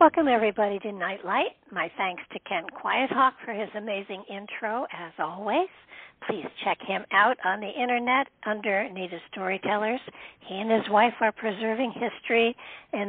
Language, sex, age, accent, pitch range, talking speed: English, female, 60-79, American, 200-245 Hz, 150 wpm